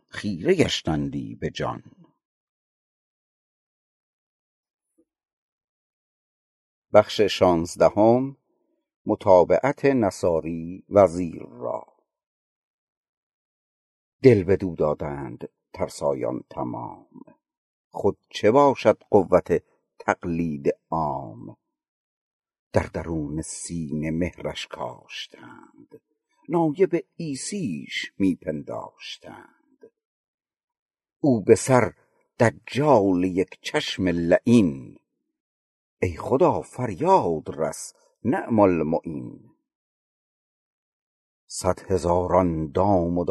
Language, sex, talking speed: Persian, male, 60 wpm